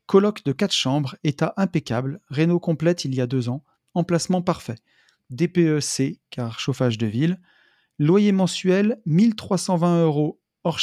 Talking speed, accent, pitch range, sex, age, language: 140 wpm, French, 135-180 Hz, male, 40-59, French